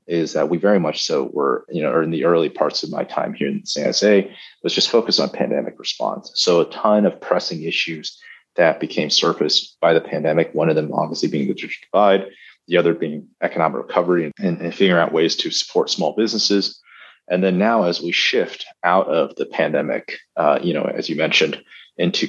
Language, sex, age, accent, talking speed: English, male, 30-49, American, 215 wpm